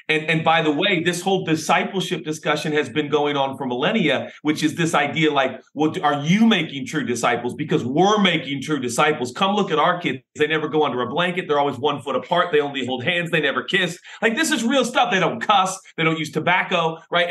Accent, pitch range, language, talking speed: American, 150-195 Hz, English, 235 wpm